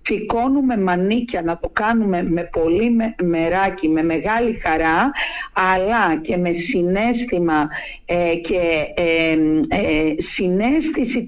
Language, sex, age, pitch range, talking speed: Greek, female, 50-69, 175-235 Hz, 105 wpm